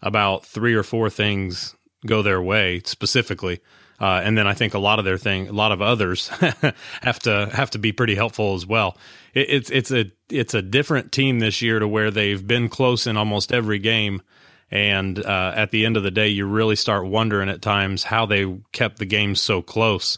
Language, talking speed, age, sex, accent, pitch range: English, 215 wpm, 30-49, male, American, 95-115 Hz